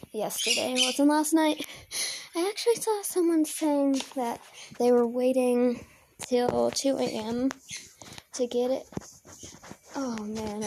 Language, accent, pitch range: English, American, 235-310 Hz